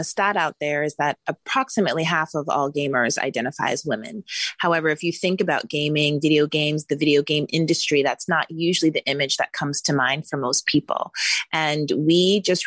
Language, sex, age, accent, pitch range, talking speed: English, female, 30-49, American, 140-165 Hz, 195 wpm